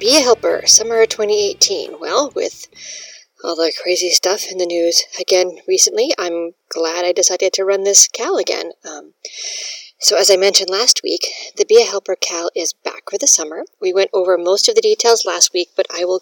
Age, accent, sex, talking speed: 40-59, American, female, 200 wpm